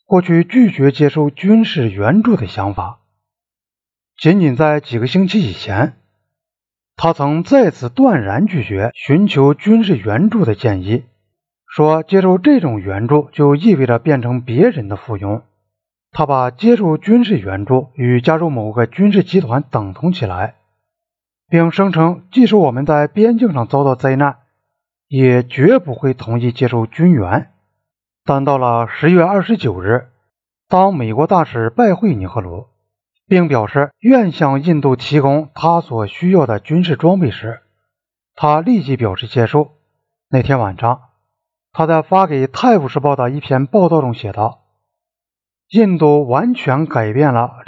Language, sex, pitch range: Chinese, male, 115-175 Hz